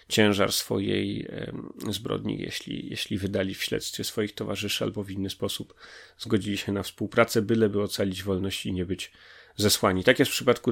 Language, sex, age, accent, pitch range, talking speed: Polish, male, 30-49, native, 100-110 Hz, 170 wpm